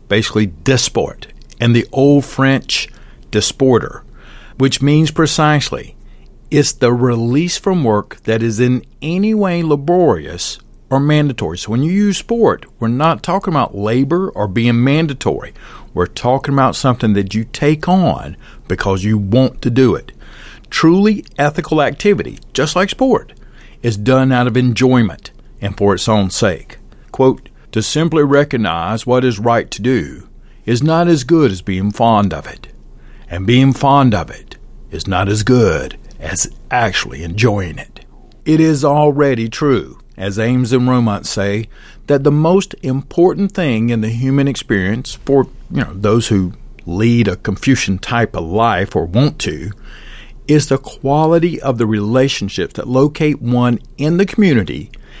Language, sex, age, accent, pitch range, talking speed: English, male, 50-69, American, 110-150 Hz, 155 wpm